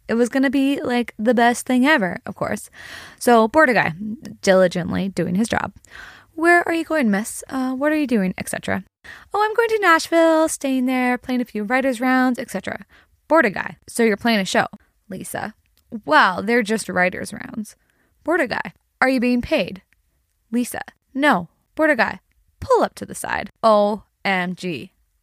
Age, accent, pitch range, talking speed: 20-39, American, 200-265 Hz, 170 wpm